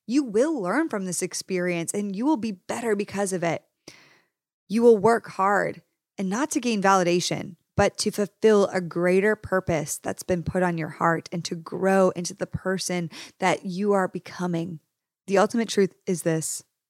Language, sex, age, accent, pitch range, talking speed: English, female, 20-39, American, 170-205 Hz, 180 wpm